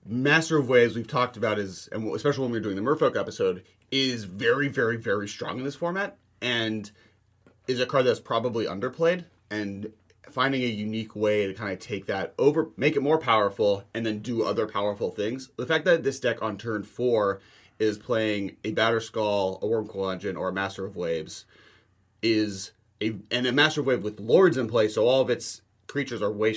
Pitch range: 100-135 Hz